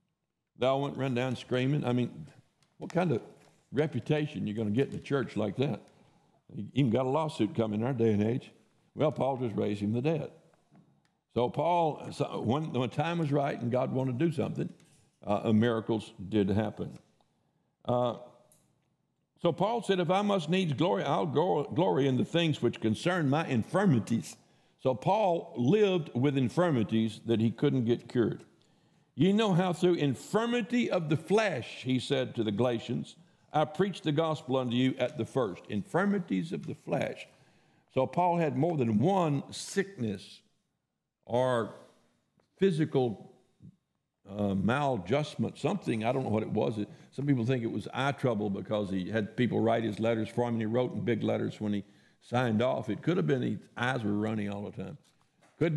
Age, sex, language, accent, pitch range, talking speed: 60-79, male, English, American, 115-155 Hz, 180 wpm